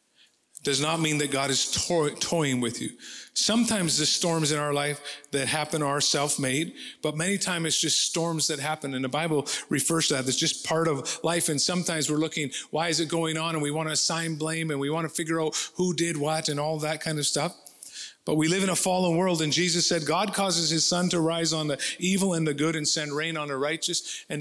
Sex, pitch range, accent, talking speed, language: male, 145-175 Hz, American, 240 wpm, English